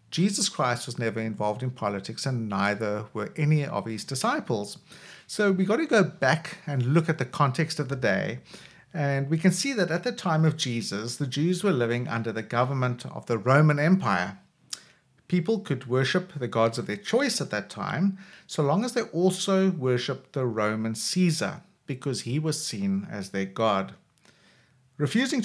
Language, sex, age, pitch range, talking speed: English, male, 50-69, 125-185 Hz, 180 wpm